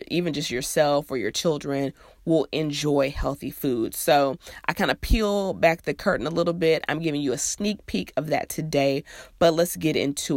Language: English